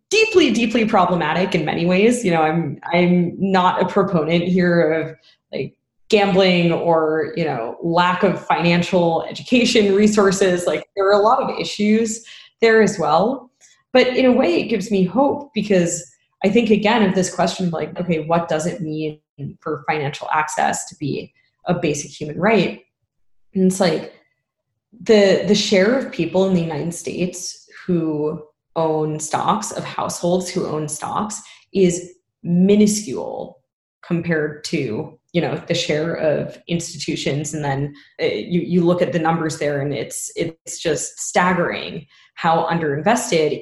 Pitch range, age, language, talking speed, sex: 165-210 Hz, 20-39, English, 155 wpm, female